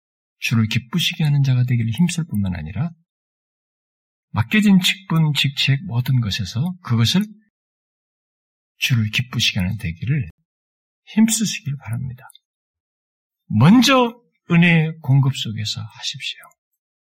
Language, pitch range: Korean, 115-155 Hz